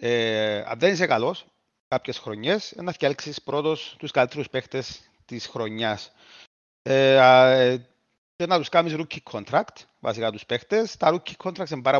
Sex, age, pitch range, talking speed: male, 30-49, 125-155 Hz, 150 wpm